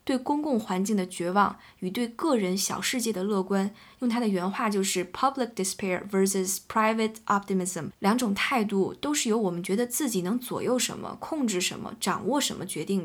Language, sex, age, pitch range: Chinese, female, 20-39, 190-235 Hz